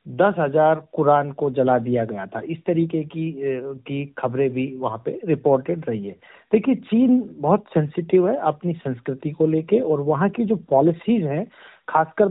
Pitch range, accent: 155-210 Hz, native